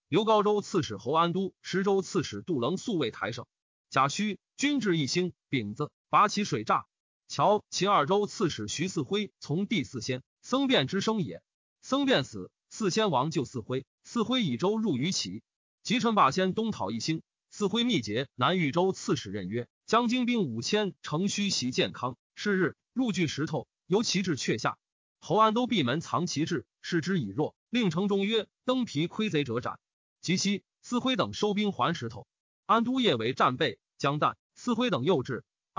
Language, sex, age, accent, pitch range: Chinese, male, 30-49, native, 150-215 Hz